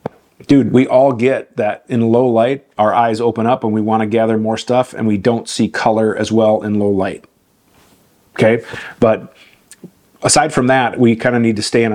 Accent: American